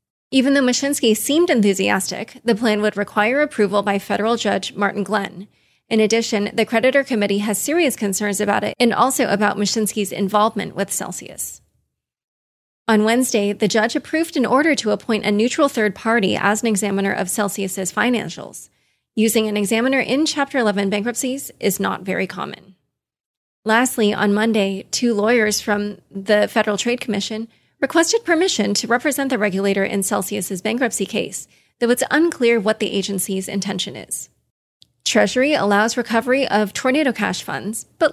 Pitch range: 205-245 Hz